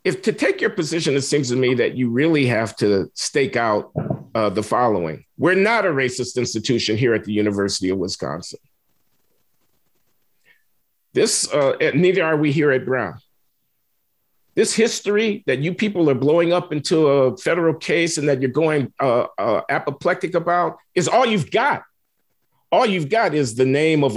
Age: 50-69